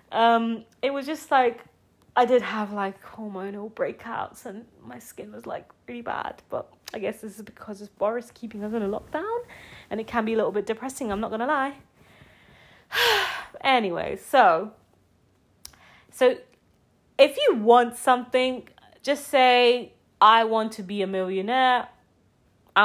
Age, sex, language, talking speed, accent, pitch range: 30-49, female, English, 155 wpm, British, 195-280 Hz